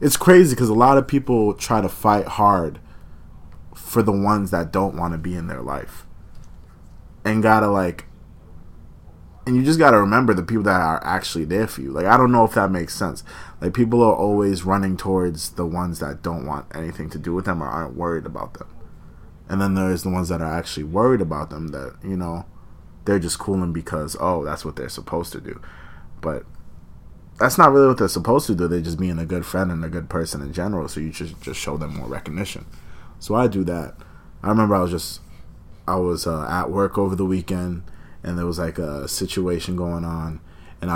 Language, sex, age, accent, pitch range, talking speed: English, male, 20-39, American, 85-105 Hz, 215 wpm